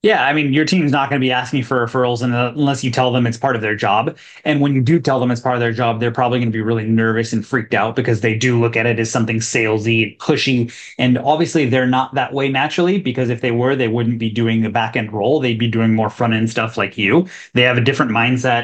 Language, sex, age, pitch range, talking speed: English, male, 20-39, 120-145 Hz, 275 wpm